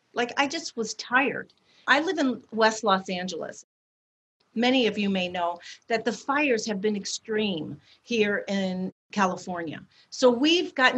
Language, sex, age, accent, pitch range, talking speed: English, female, 50-69, American, 190-245 Hz, 155 wpm